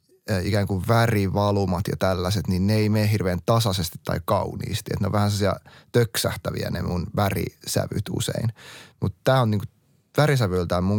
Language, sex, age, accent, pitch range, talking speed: Finnish, male, 30-49, native, 95-130 Hz, 155 wpm